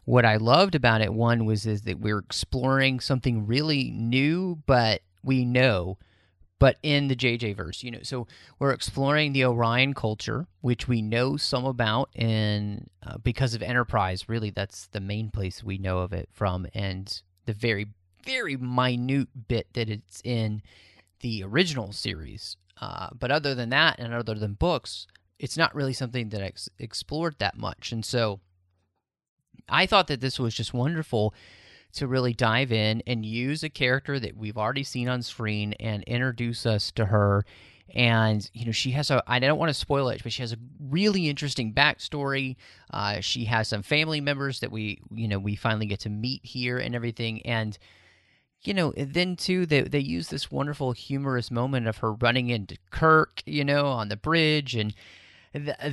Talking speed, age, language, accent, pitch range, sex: 180 wpm, 30-49, English, American, 105-135 Hz, male